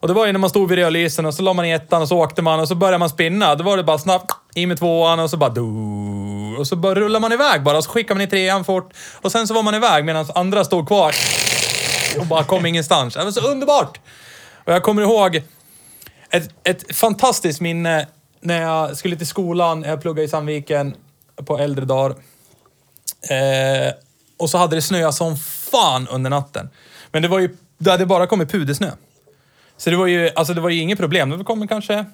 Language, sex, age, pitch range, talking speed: Swedish, male, 30-49, 140-185 Hz, 215 wpm